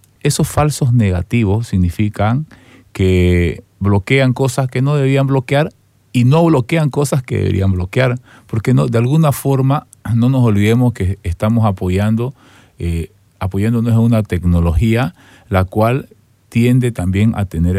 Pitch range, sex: 90-120 Hz, male